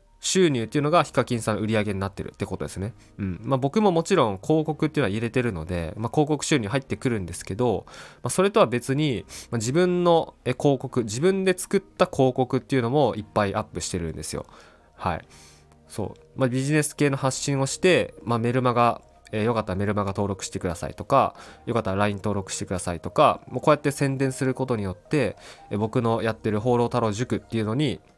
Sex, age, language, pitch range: male, 20-39, Japanese, 95-140 Hz